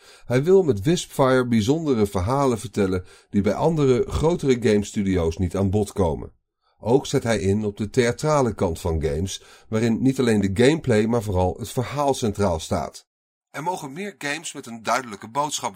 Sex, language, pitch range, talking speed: male, Dutch, 100-140 Hz, 170 wpm